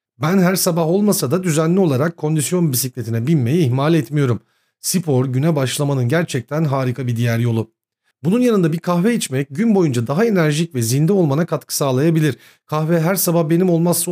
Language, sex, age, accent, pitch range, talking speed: Turkish, male, 40-59, native, 135-180 Hz, 165 wpm